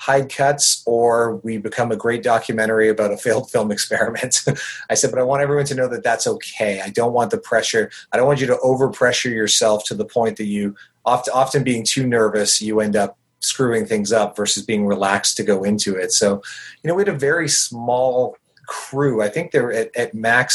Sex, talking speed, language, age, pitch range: male, 215 wpm, English, 30-49, 105-130 Hz